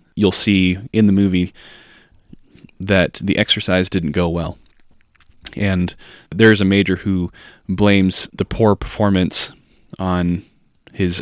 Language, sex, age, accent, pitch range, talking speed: English, male, 20-39, American, 90-105 Hz, 120 wpm